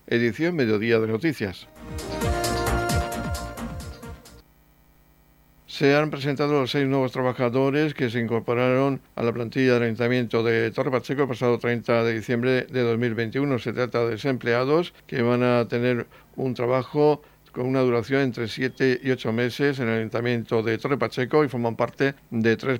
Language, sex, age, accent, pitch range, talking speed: Spanish, male, 60-79, Spanish, 115-130 Hz, 155 wpm